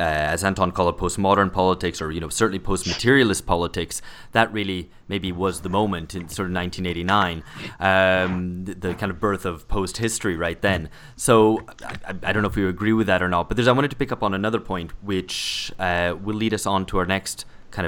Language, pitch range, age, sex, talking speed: English, 90-105 Hz, 20-39, male, 220 wpm